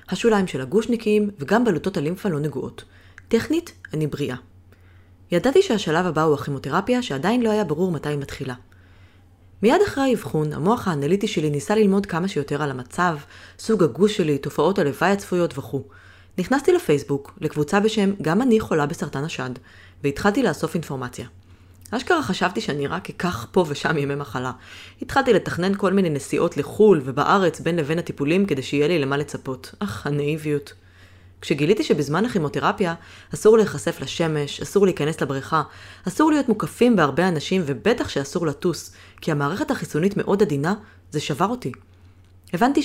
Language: Hebrew